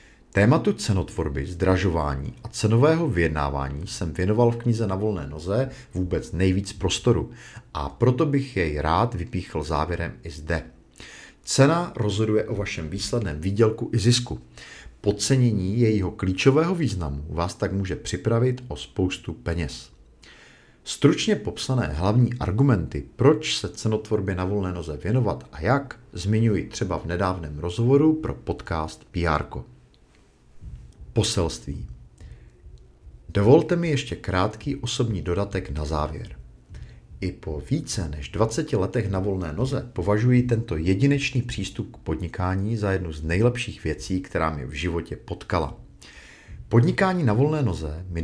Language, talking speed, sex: Czech, 130 wpm, male